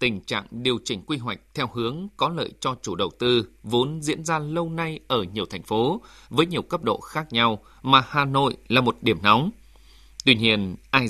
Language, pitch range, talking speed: Vietnamese, 115-155 Hz, 210 wpm